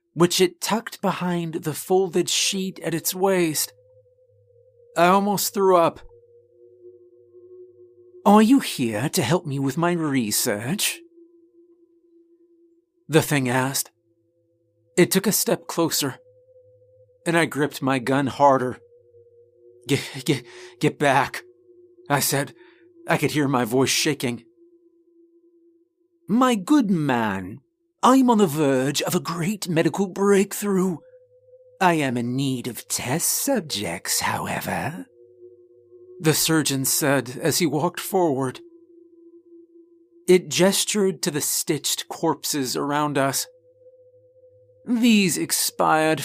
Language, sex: English, male